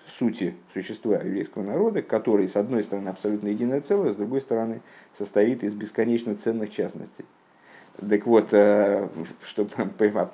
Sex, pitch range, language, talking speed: male, 105-140 Hz, Russian, 140 wpm